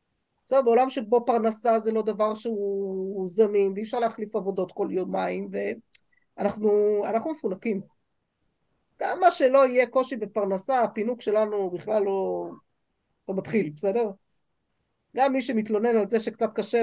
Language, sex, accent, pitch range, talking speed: Hebrew, female, native, 195-240 Hz, 130 wpm